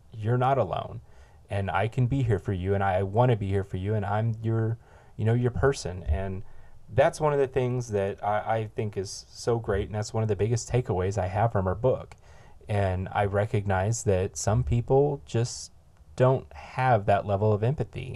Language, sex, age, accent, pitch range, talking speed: English, male, 30-49, American, 95-125 Hz, 210 wpm